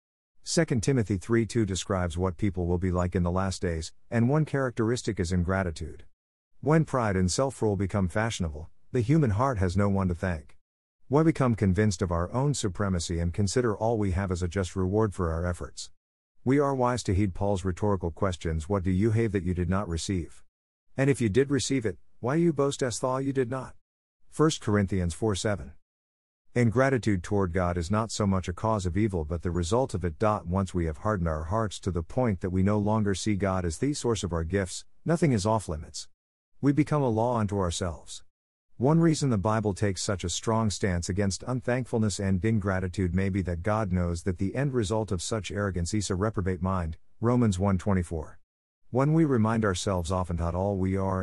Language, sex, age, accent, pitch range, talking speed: English, male, 50-69, American, 90-115 Hz, 200 wpm